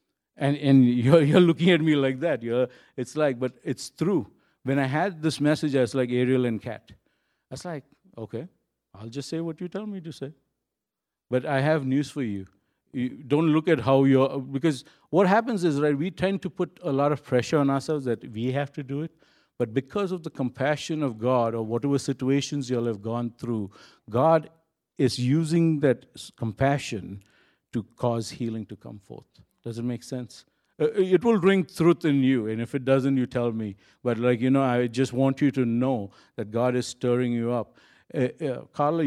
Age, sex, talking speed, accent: 50-69, male, 205 wpm, Indian